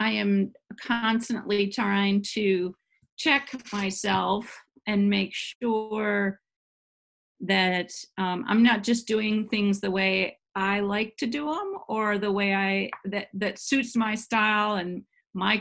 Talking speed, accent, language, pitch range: 135 wpm, American, English, 185-220 Hz